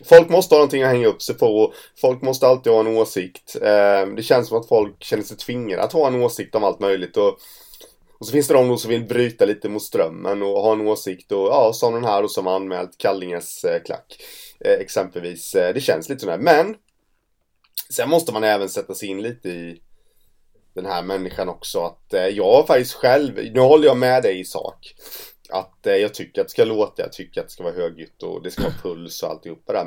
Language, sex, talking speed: Swedish, male, 215 wpm